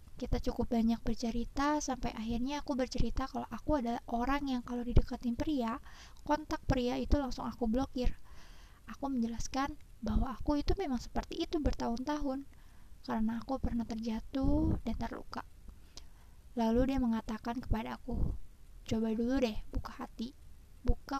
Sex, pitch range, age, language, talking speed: female, 225-260 Hz, 20-39, Malay, 135 wpm